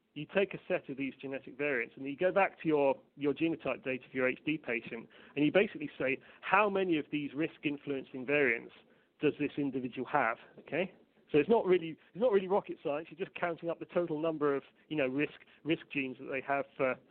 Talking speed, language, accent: 220 wpm, English, British